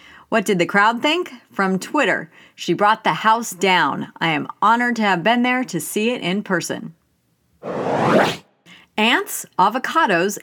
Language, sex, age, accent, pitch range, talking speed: English, female, 40-59, American, 180-235 Hz, 150 wpm